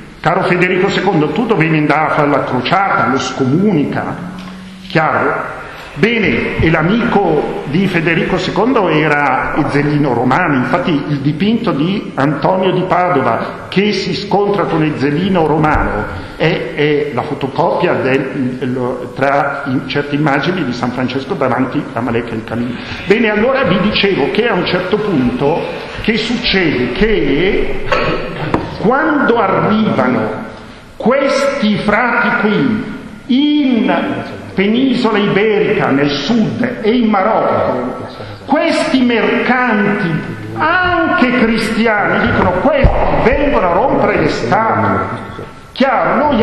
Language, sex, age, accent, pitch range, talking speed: Italian, male, 50-69, native, 145-215 Hz, 115 wpm